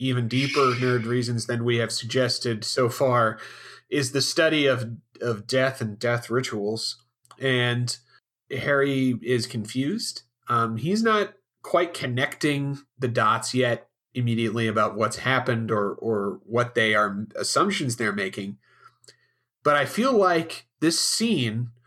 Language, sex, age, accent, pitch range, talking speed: English, male, 30-49, American, 120-155 Hz, 135 wpm